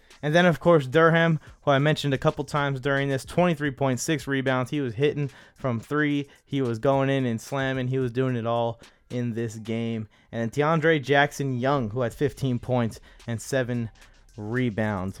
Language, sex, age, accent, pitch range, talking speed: English, male, 20-39, American, 120-150 Hz, 180 wpm